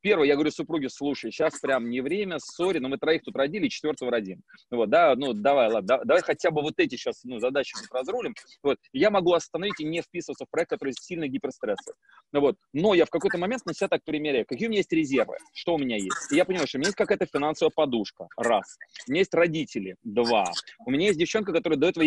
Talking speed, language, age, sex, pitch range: 235 wpm, Russian, 30-49, male, 145-205 Hz